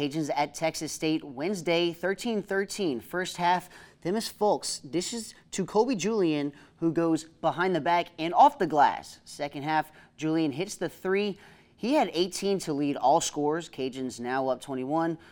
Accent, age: American, 30-49